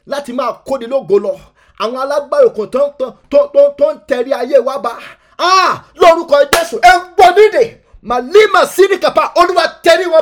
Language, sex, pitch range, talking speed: English, male, 250-315 Hz, 160 wpm